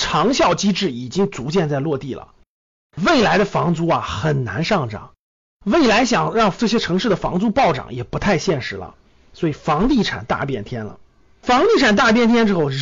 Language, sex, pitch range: Chinese, male, 155-235 Hz